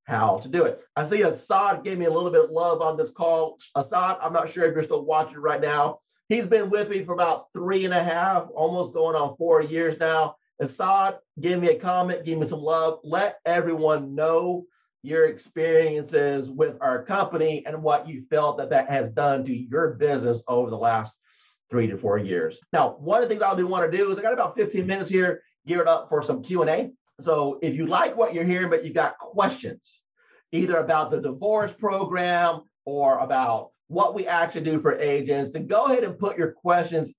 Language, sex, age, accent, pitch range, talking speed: English, male, 40-59, American, 140-180 Hz, 215 wpm